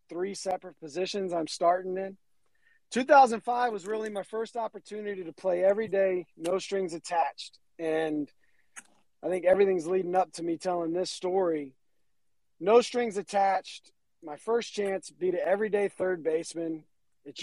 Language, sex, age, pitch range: English, male, 40-59, 170-200 Hz